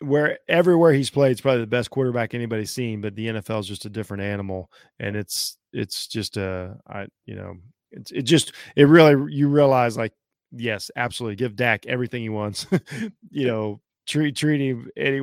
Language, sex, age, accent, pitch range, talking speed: English, male, 20-39, American, 110-140 Hz, 195 wpm